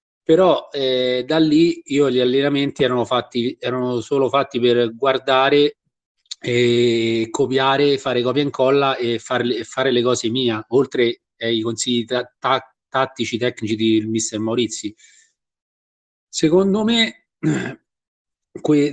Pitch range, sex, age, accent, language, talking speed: 120-145 Hz, male, 30-49, native, Italian, 125 wpm